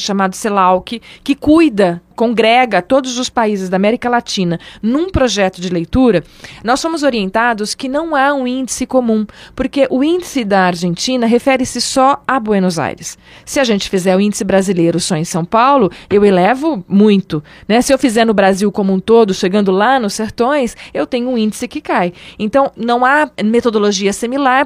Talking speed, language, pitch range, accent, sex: 180 wpm, Portuguese, 195-265 Hz, Brazilian, female